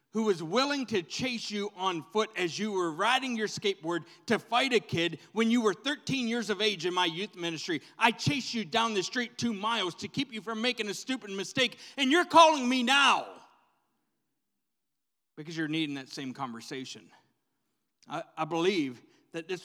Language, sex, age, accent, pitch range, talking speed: English, male, 30-49, American, 165-220 Hz, 185 wpm